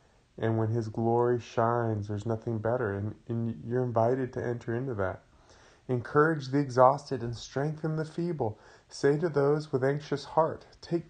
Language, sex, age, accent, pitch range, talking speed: English, male, 30-49, American, 110-135 Hz, 160 wpm